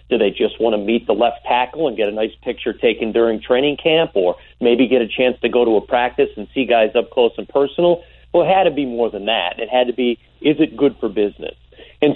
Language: English